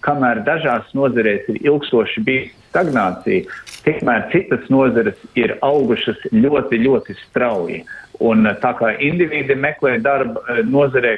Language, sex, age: Russian, male, 50-69